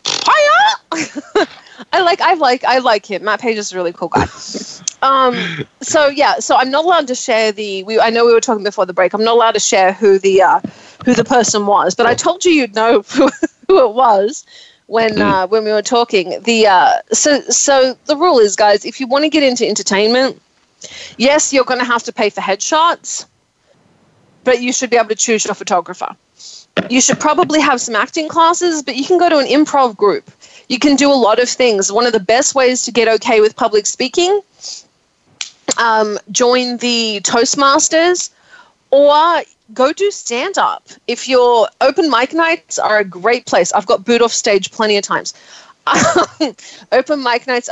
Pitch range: 215-285 Hz